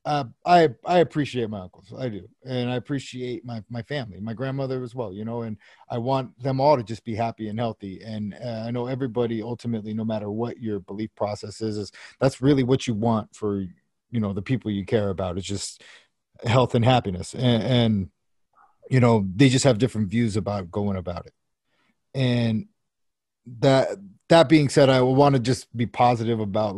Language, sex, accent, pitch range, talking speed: English, male, American, 110-135 Hz, 195 wpm